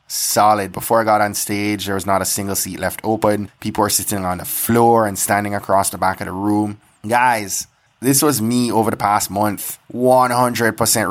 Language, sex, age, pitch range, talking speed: English, male, 20-39, 100-110 Hz, 200 wpm